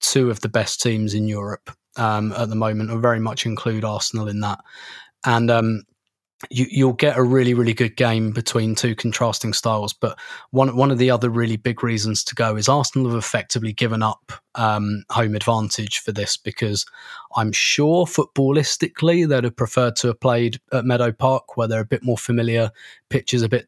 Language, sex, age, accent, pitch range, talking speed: English, male, 20-39, British, 110-125 Hz, 195 wpm